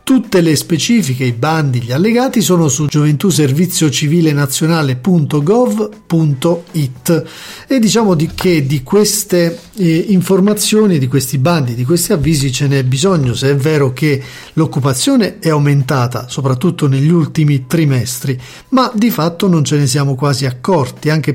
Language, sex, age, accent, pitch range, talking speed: Italian, male, 40-59, native, 140-180 Hz, 135 wpm